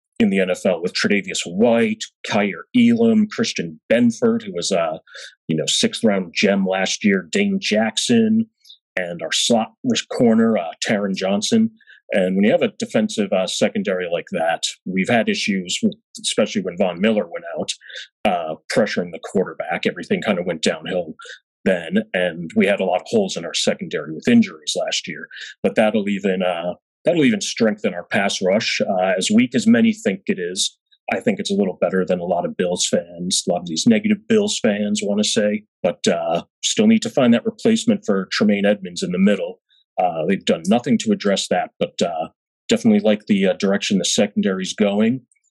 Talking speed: 190 wpm